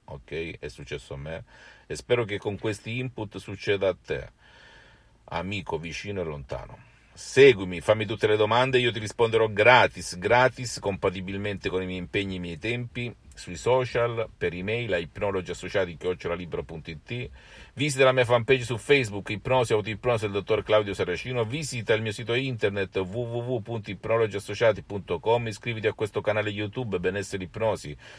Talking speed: 145 wpm